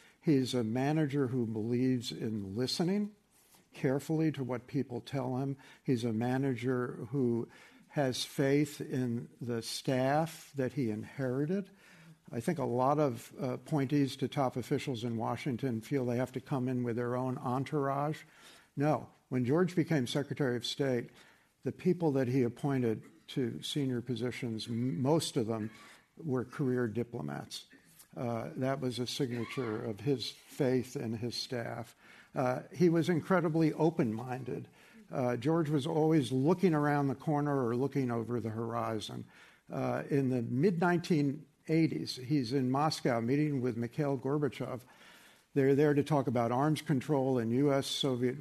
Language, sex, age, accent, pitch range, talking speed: English, male, 60-79, American, 125-150 Hz, 145 wpm